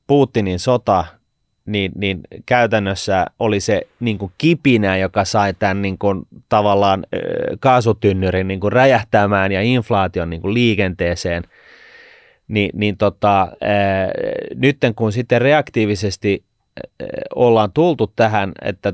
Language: Finnish